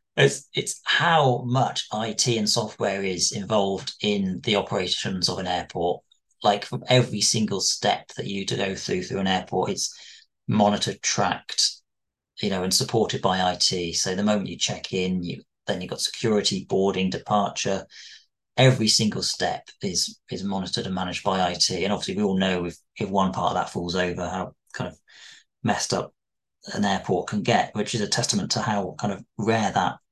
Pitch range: 95-125 Hz